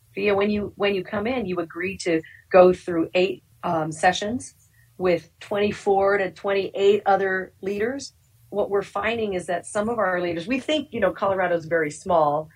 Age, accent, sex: 40-59, American, female